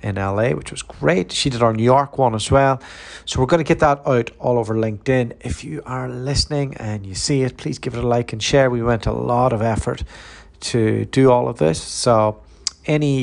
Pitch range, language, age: 110-135 Hz, English, 40-59